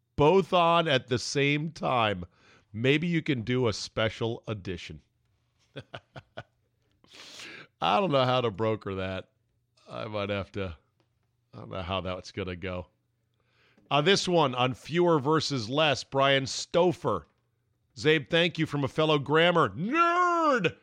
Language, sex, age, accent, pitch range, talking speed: English, male, 40-59, American, 110-135 Hz, 140 wpm